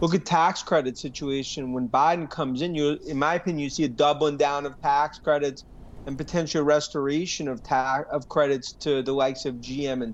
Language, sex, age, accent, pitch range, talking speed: English, male, 30-49, American, 130-155 Hz, 200 wpm